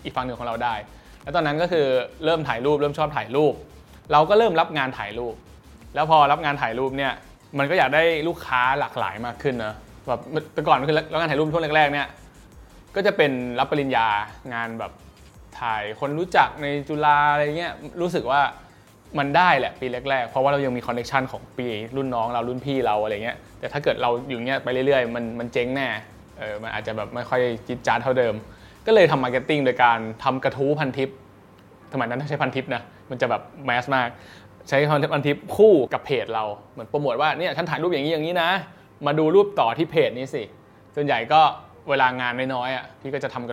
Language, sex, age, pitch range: English, male, 20-39, 120-150 Hz